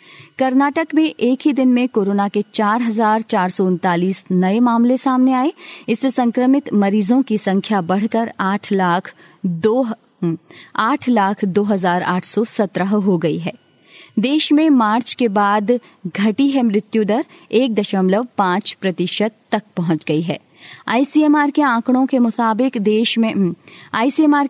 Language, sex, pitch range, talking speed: Hindi, female, 195-250 Hz, 130 wpm